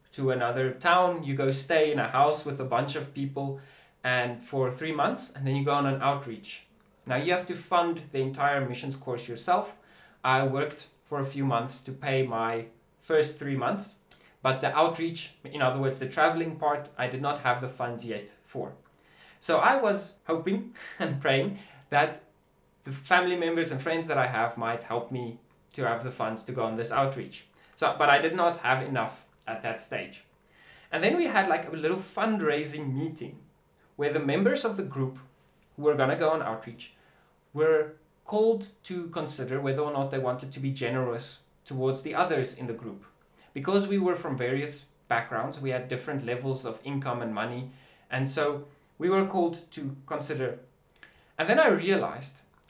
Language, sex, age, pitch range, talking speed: English, male, 20-39, 130-160 Hz, 190 wpm